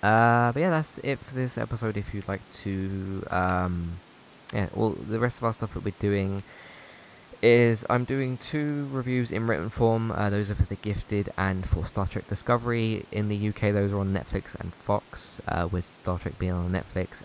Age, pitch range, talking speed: 20-39, 90-105 Hz, 200 wpm